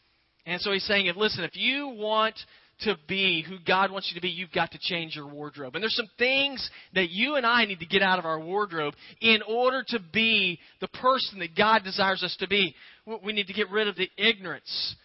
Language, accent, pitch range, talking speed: English, American, 180-215 Hz, 225 wpm